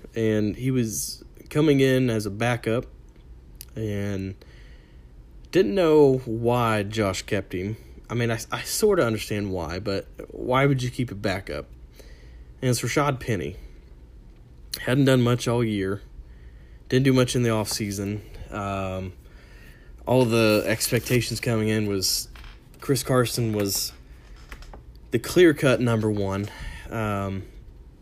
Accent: American